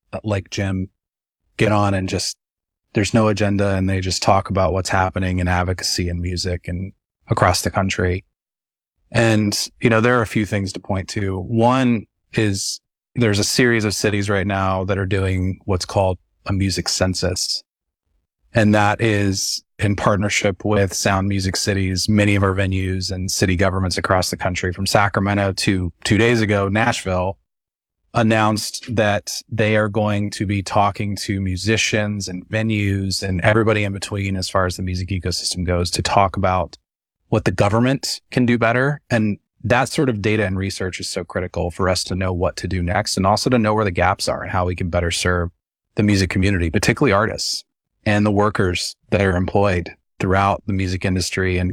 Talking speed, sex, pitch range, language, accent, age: 185 wpm, male, 95-105 Hz, English, American, 30-49